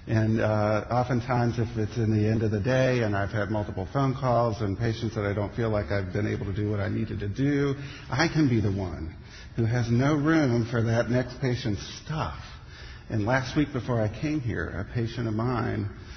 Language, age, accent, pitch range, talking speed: English, 50-69, American, 105-120 Hz, 220 wpm